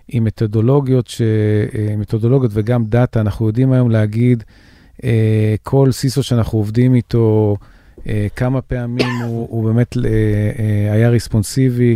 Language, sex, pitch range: Hebrew, male, 110-125 Hz